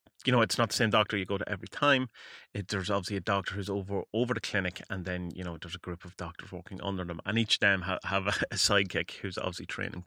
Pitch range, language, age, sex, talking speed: 90-110 Hz, English, 30-49, male, 275 wpm